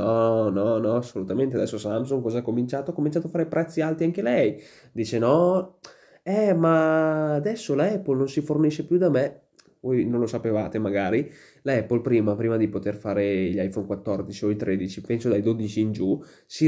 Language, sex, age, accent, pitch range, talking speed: Italian, male, 20-39, native, 105-130 Hz, 185 wpm